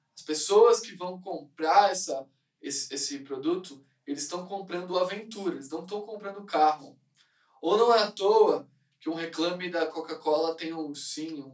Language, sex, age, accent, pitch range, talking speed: Portuguese, male, 10-29, Brazilian, 150-205 Hz, 165 wpm